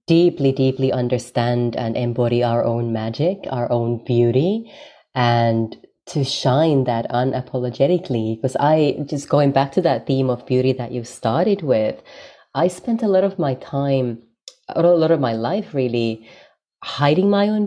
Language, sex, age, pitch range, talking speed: English, female, 30-49, 120-155 Hz, 155 wpm